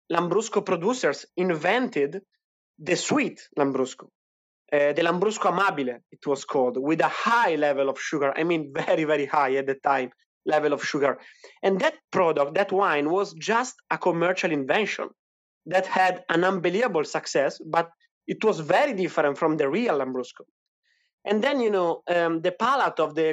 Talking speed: 160 wpm